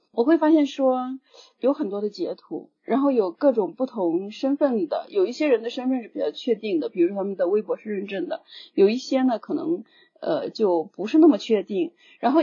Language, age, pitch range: Chinese, 40-59, 225-330 Hz